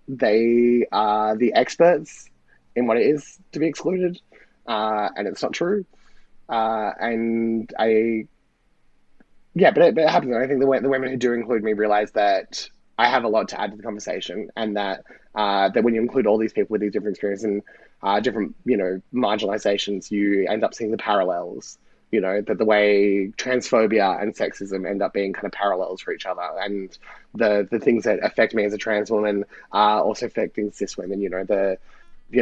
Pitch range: 105-120 Hz